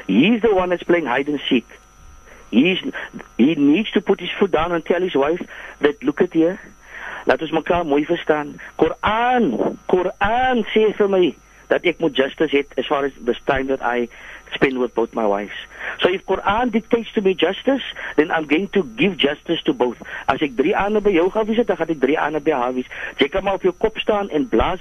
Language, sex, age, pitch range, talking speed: English, male, 50-69, 145-200 Hz, 210 wpm